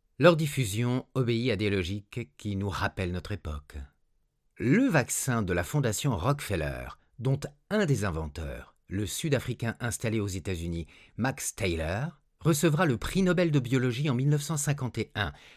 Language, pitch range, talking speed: French, 95-145 Hz, 140 wpm